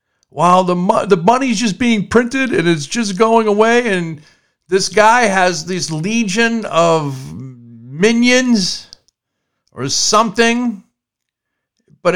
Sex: male